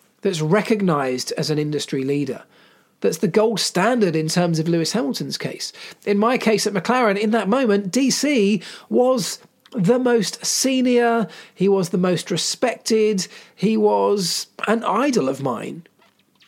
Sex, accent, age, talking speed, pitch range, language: male, British, 40-59, 145 wpm, 170-225 Hz, English